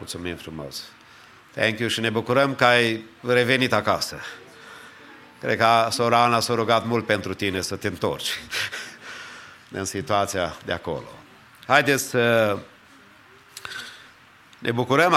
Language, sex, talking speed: English, male, 125 wpm